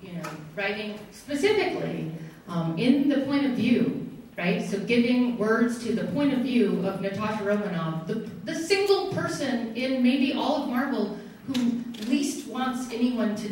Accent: American